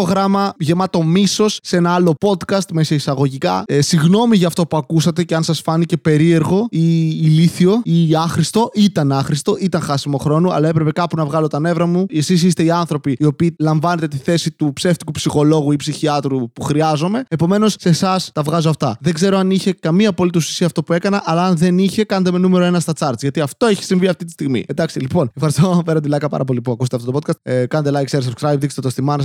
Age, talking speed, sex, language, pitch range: 20-39, 220 wpm, male, Greek, 150-180 Hz